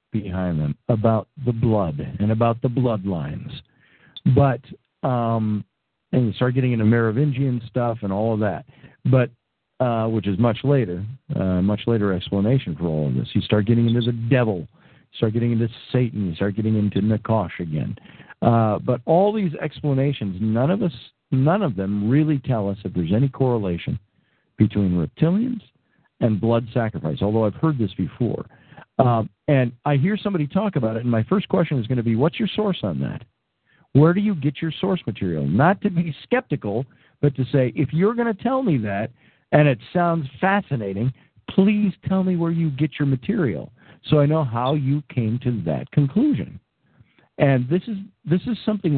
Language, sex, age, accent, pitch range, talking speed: English, male, 50-69, American, 110-155 Hz, 185 wpm